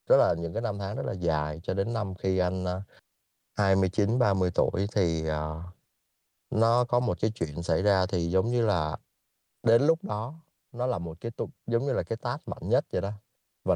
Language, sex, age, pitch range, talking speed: Vietnamese, male, 30-49, 85-110 Hz, 210 wpm